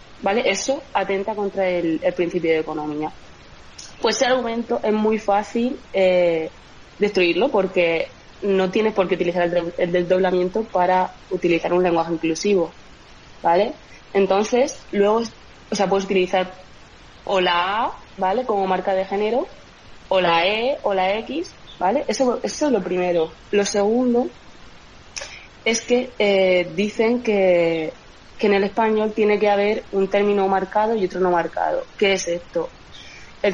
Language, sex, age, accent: Spanish, female, 20-39, Spanish